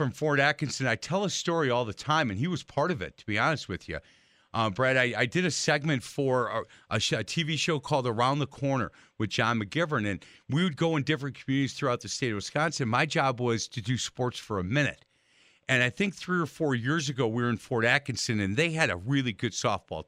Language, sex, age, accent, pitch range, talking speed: English, male, 50-69, American, 125-180 Hz, 245 wpm